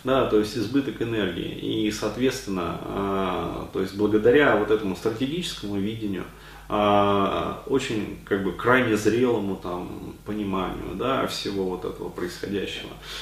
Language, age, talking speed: Russian, 30-49, 125 wpm